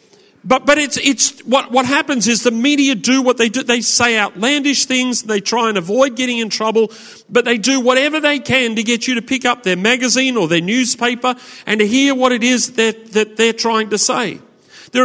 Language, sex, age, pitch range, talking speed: English, male, 40-59, 210-255 Hz, 220 wpm